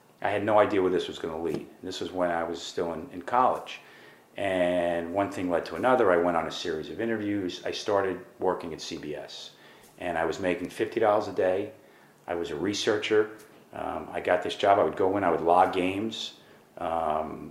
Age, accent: 40-59, American